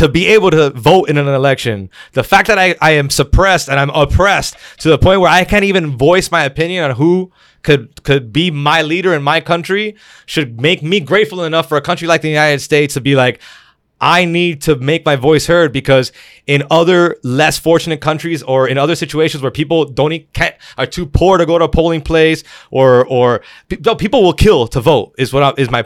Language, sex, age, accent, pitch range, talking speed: English, male, 20-39, American, 140-175 Hz, 225 wpm